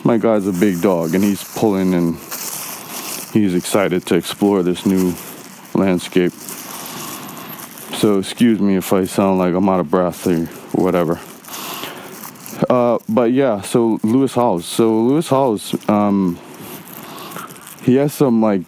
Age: 20-39